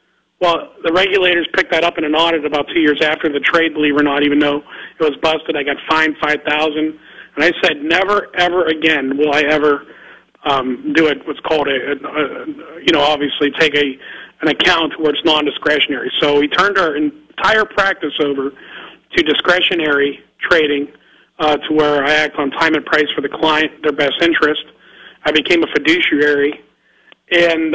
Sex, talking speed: male, 185 wpm